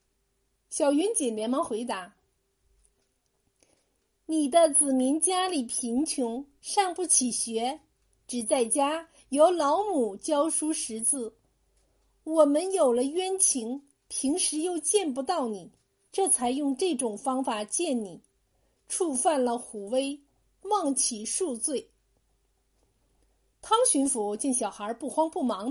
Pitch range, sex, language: 230-315 Hz, female, Chinese